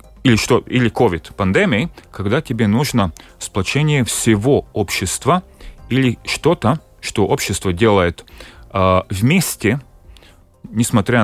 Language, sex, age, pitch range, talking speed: Russian, male, 30-49, 90-115 Hz, 90 wpm